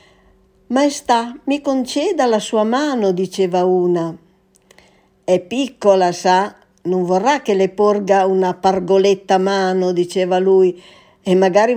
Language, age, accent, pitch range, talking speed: Italian, 60-79, native, 175-225 Hz, 115 wpm